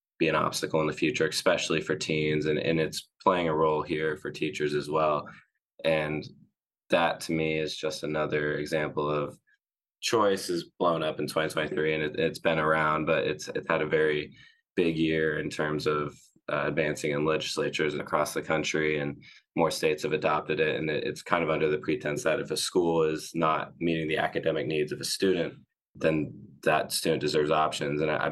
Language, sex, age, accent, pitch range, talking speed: English, male, 20-39, American, 75-80 Hz, 195 wpm